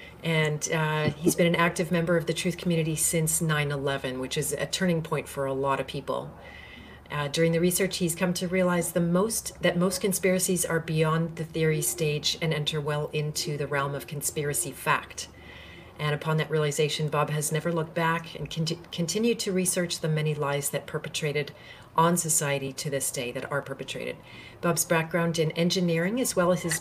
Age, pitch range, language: 40-59, 150-175 Hz, English